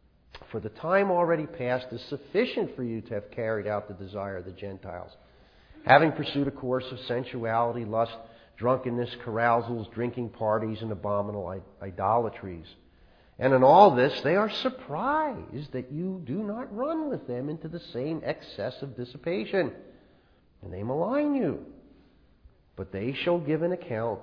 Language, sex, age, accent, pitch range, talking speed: English, male, 50-69, American, 100-140 Hz, 155 wpm